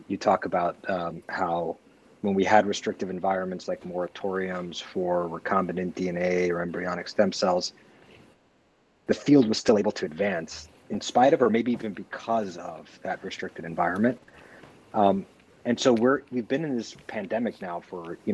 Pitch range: 95-115 Hz